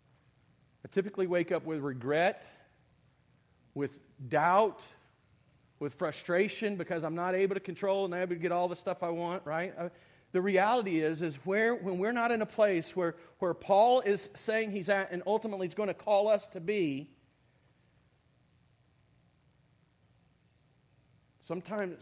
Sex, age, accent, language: male, 40-59, American, English